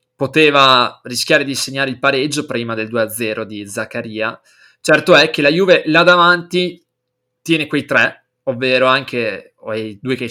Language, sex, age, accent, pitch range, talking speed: Italian, male, 20-39, native, 115-140 Hz, 165 wpm